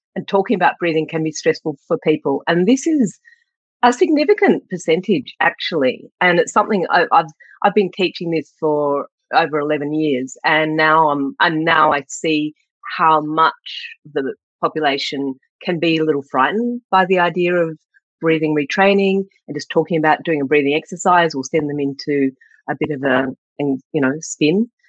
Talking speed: 165 wpm